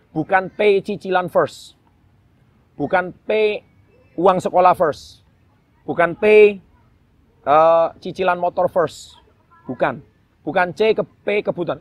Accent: native